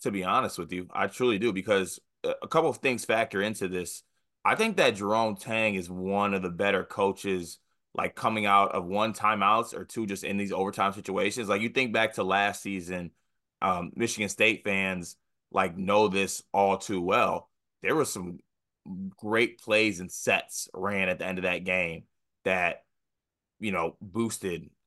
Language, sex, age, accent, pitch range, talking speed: English, male, 20-39, American, 95-110 Hz, 180 wpm